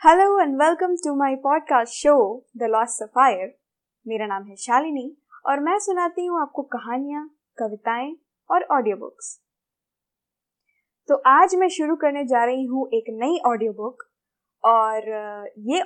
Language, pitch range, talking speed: Hindi, 230-325 Hz, 140 wpm